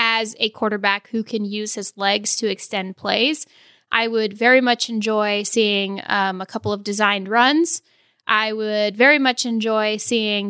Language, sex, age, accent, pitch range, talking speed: English, female, 10-29, American, 205-230 Hz, 165 wpm